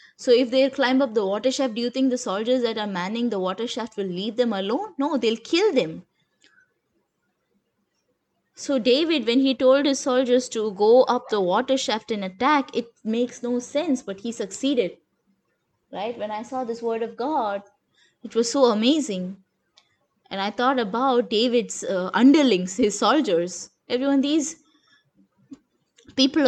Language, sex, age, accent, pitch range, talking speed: English, female, 20-39, Indian, 225-275 Hz, 165 wpm